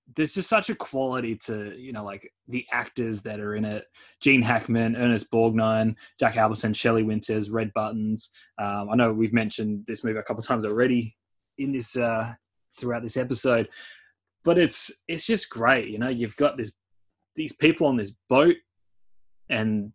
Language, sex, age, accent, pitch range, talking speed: English, male, 20-39, Australian, 110-135 Hz, 175 wpm